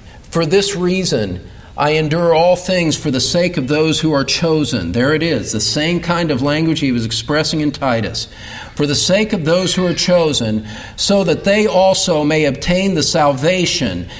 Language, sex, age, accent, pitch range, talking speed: English, male, 50-69, American, 150-200 Hz, 185 wpm